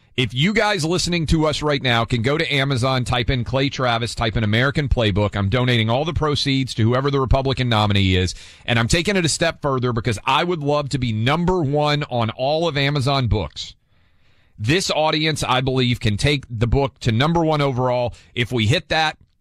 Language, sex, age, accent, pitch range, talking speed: English, male, 40-59, American, 115-145 Hz, 205 wpm